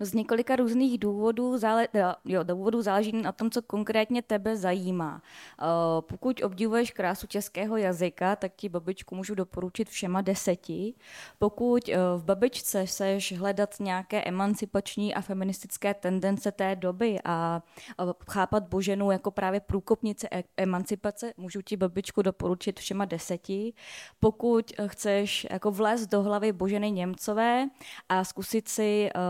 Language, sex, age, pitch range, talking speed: Czech, female, 20-39, 180-210 Hz, 120 wpm